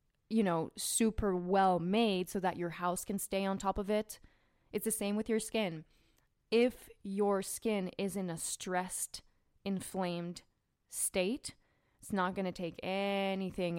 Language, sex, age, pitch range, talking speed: English, female, 20-39, 180-210 Hz, 155 wpm